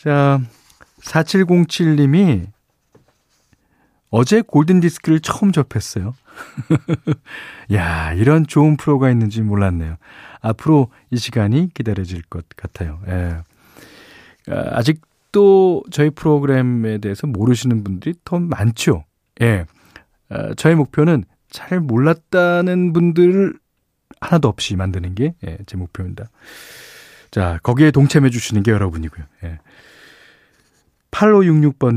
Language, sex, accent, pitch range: Korean, male, native, 100-150 Hz